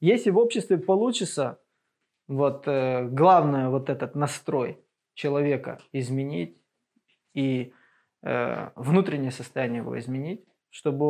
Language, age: Russian, 20-39